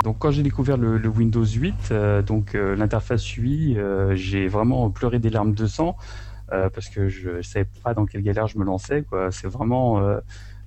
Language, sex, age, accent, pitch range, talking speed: French, male, 30-49, French, 95-115 Hz, 215 wpm